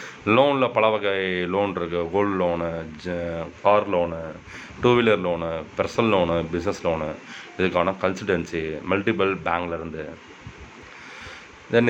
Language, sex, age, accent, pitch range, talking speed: Tamil, male, 30-49, native, 85-115 Hz, 110 wpm